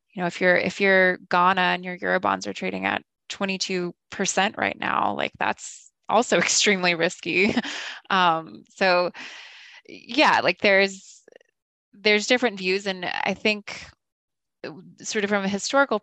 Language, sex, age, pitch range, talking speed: English, female, 20-39, 175-210 Hz, 150 wpm